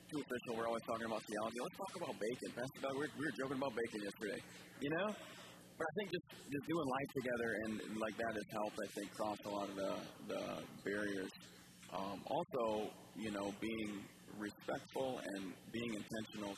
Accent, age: American, 40-59